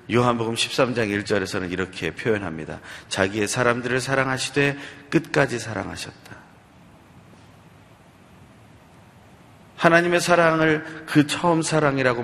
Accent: native